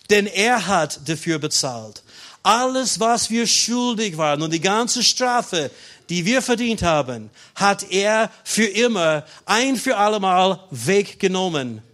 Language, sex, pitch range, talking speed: German, male, 170-220 Hz, 130 wpm